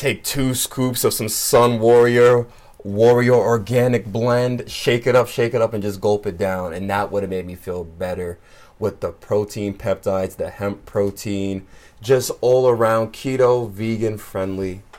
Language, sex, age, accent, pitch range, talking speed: English, male, 30-49, American, 95-115 Hz, 170 wpm